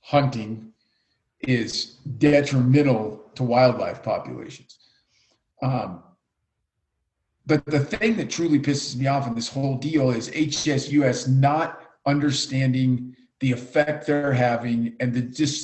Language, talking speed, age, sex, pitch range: English, 115 wpm, 50-69, male, 125-150 Hz